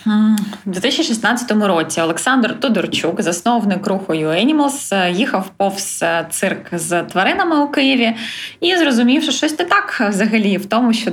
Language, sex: Ukrainian, female